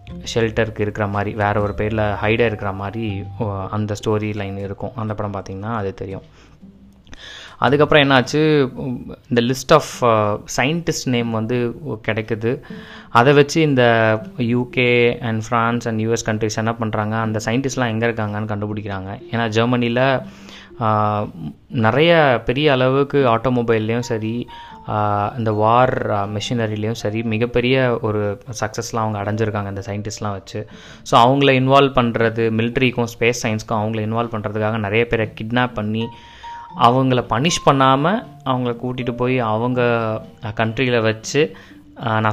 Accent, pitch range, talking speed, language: native, 105-125 Hz, 125 wpm, Tamil